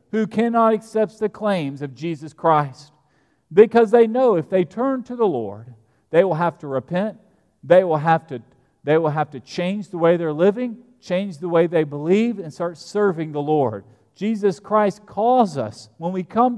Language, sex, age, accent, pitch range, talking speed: English, male, 40-59, American, 145-210 Hz, 175 wpm